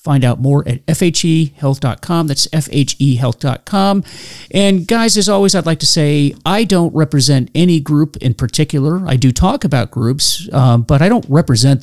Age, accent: 40-59, American